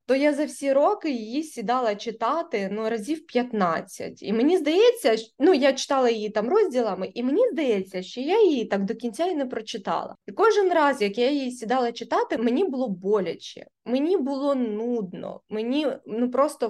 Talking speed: 175 wpm